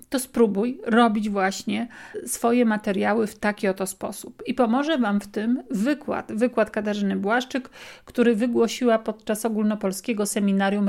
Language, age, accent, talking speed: Polish, 50-69, native, 130 wpm